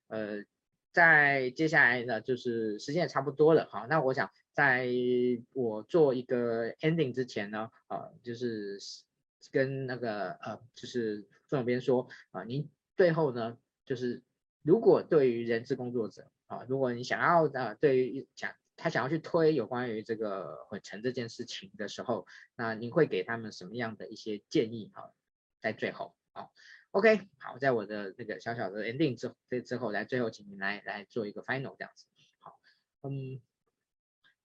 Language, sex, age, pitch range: Chinese, male, 20-39, 115-145 Hz